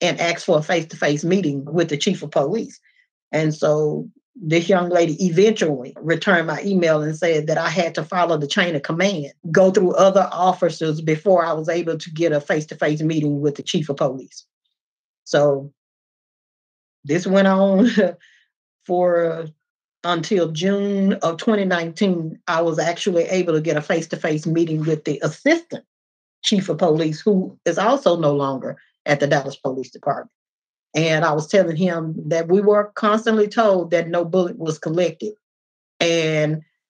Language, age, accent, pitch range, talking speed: English, 40-59, American, 160-195 Hz, 160 wpm